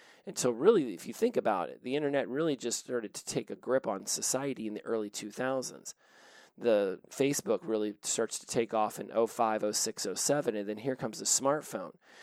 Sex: male